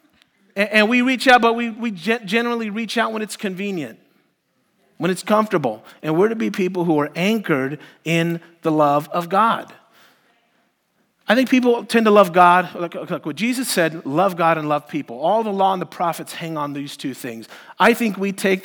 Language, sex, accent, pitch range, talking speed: English, male, American, 155-215 Hz, 195 wpm